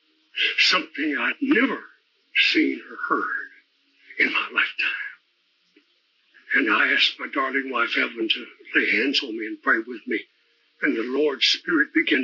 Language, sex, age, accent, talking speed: English, male, 60-79, American, 145 wpm